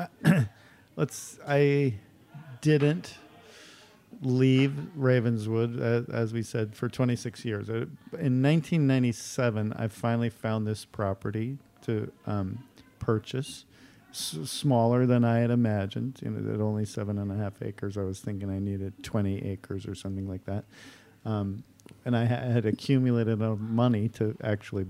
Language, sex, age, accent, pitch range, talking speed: English, male, 50-69, American, 105-125 Hz, 145 wpm